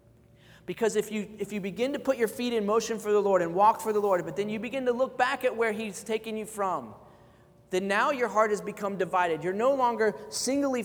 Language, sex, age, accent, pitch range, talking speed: English, male, 30-49, American, 175-215 Hz, 245 wpm